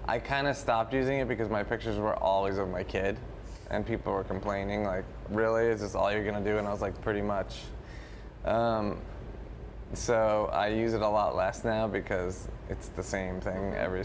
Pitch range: 100-135 Hz